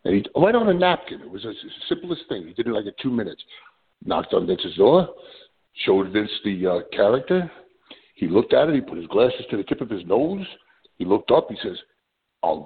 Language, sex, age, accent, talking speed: English, male, 50-69, American, 225 wpm